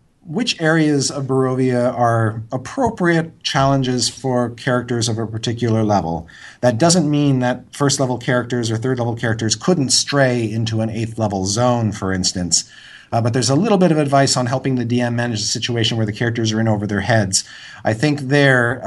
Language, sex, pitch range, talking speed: English, male, 105-130 Hz, 180 wpm